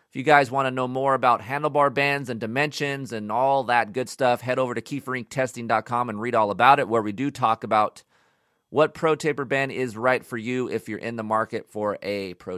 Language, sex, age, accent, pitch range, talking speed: English, male, 30-49, American, 125-165 Hz, 225 wpm